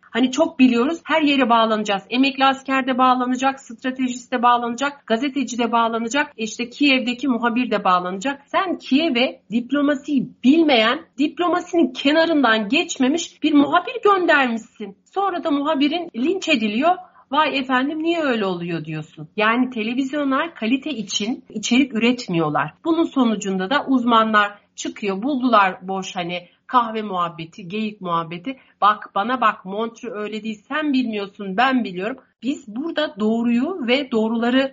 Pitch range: 210-280 Hz